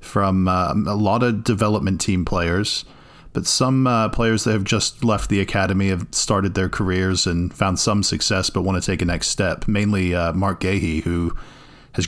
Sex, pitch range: male, 95-115 Hz